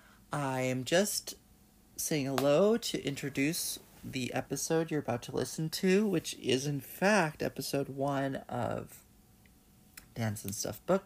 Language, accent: English, American